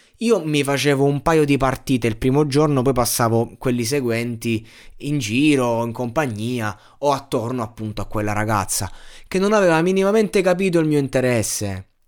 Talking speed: 165 wpm